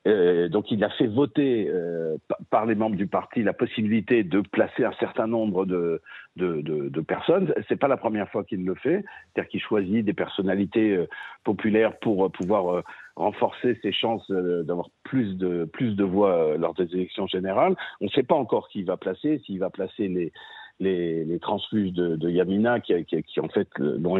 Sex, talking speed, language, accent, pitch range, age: male, 200 wpm, French, French, 90-115 Hz, 50-69